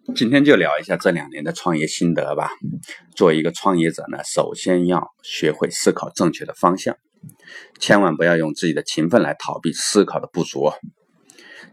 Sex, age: male, 30-49